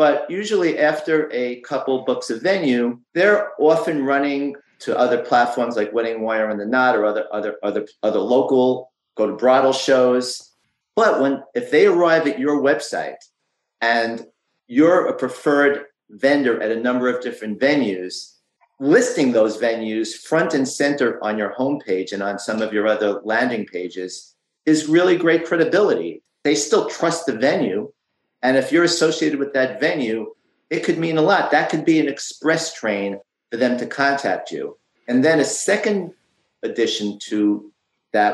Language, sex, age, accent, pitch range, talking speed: English, male, 50-69, American, 110-145 Hz, 165 wpm